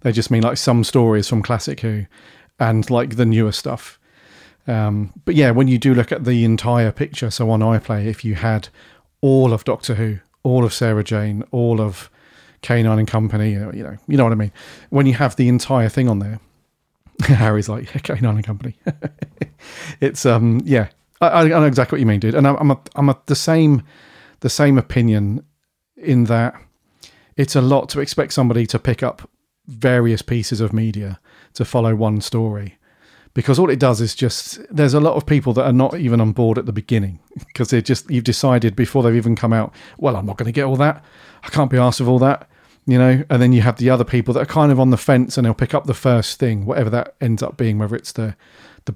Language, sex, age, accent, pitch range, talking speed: English, male, 40-59, British, 110-130 Hz, 225 wpm